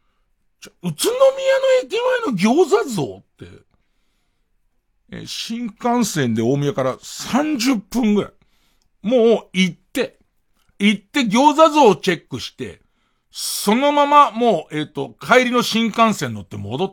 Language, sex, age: Japanese, male, 60-79